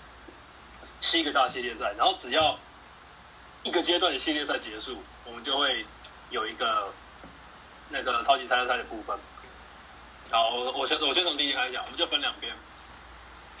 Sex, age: male, 20-39